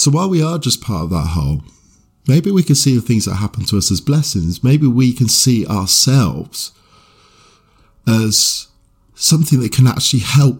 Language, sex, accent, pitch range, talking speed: English, male, British, 100-135 Hz, 180 wpm